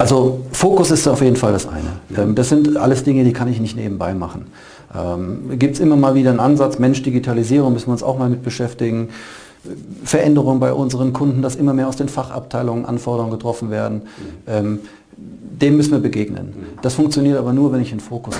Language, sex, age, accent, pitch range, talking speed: German, male, 40-59, German, 115-135 Hz, 190 wpm